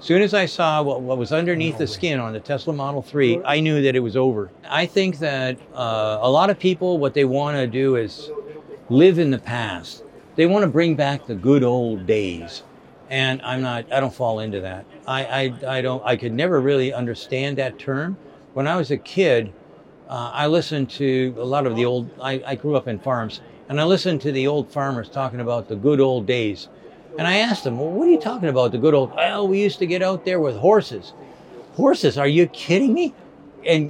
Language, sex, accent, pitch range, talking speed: Romanian, male, American, 125-160 Hz, 225 wpm